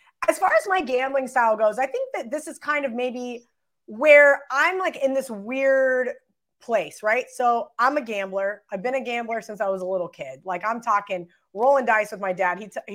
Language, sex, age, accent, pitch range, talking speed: English, female, 20-39, American, 200-260 Hz, 220 wpm